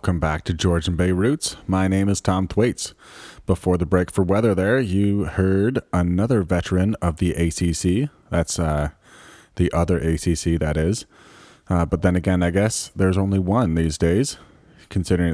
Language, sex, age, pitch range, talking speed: English, male, 30-49, 85-105 Hz, 170 wpm